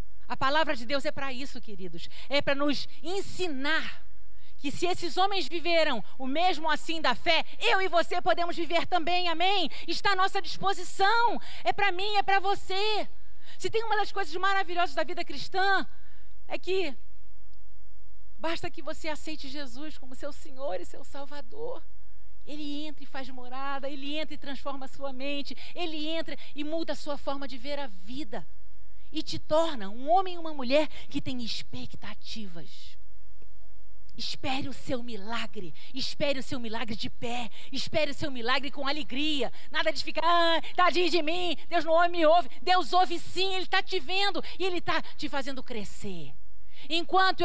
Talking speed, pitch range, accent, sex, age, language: 170 wpm, 275-345 Hz, Brazilian, female, 40-59, Portuguese